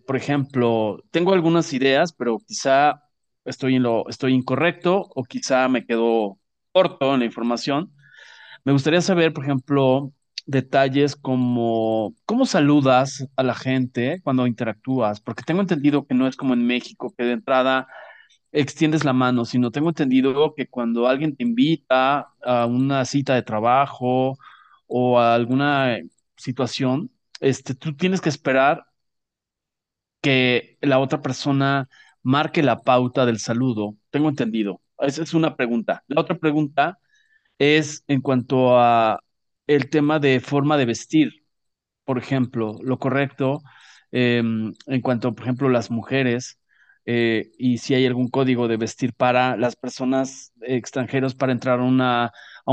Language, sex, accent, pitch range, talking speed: Spanish, male, Mexican, 125-145 Hz, 145 wpm